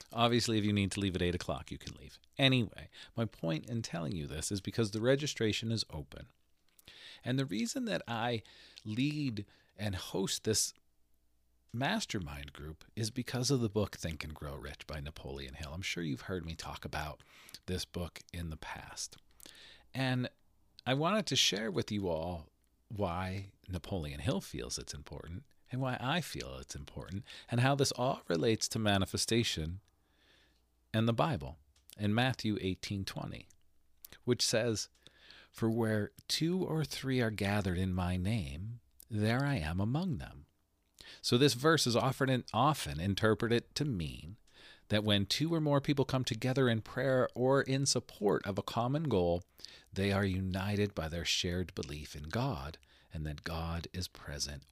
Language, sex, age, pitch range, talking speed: English, male, 40-59, 80-120 Hz, 165 wpm